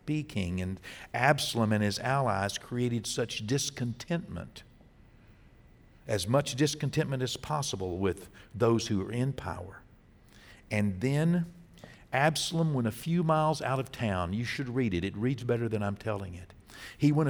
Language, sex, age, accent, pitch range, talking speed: English, male, 60-79, American, 100-140 Hz, 150 wpm